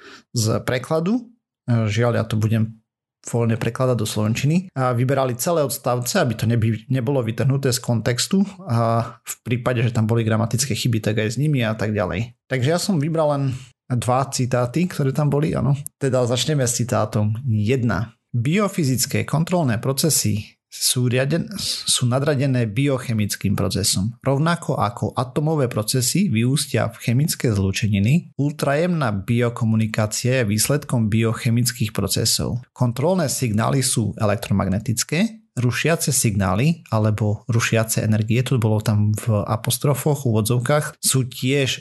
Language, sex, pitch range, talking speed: Slovak, male, 110-135 Hz, 130 wpm